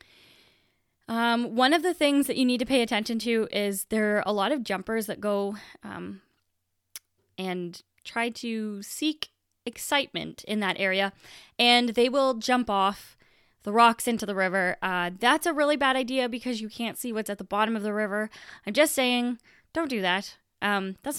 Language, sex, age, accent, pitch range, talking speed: English, female, 20-39, American, 195-260 Hz, 185 wpm